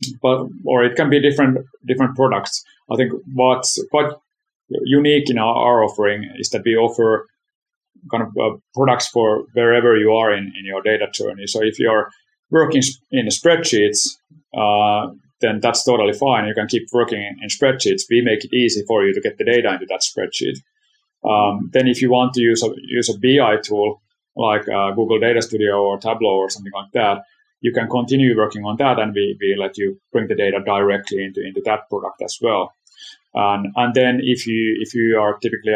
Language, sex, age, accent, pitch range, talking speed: English, male, 30-49, Finnish, 105-140 Hz, 200 wpm